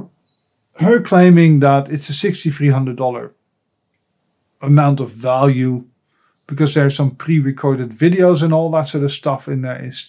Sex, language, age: male, English, 50-69